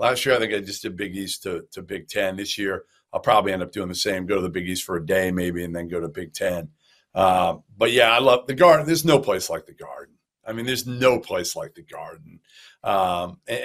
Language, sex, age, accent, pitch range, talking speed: English, male, 50-69, American, 120-155 Hz, 265 wpm